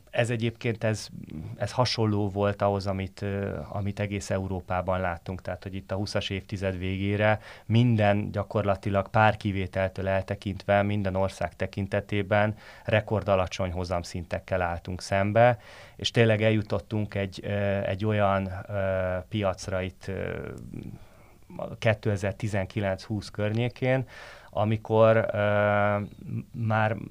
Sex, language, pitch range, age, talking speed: male, Hungarian, 95-110 Hz, 30-49, 95 wpm